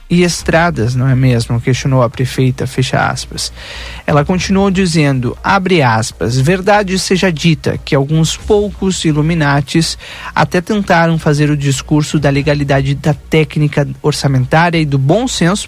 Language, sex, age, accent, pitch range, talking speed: Portuguese, male, 40-59, Brazilian, 140-185 Hz, 140 wpm